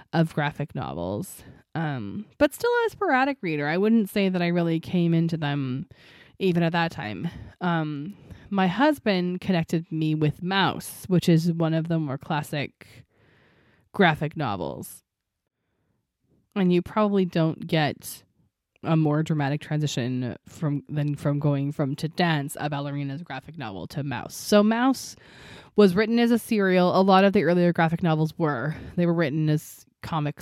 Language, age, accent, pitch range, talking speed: English, 20-39, American, 145-180 Hz, 160 wpm